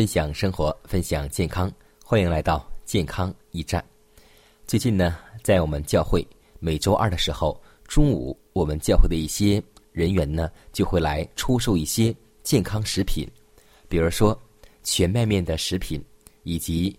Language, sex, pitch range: Chinese, male, 80-110 Hz